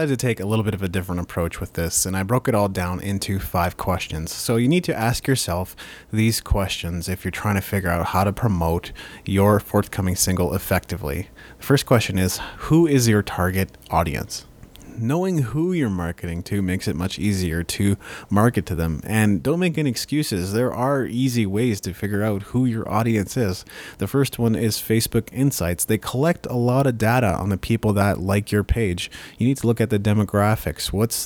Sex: male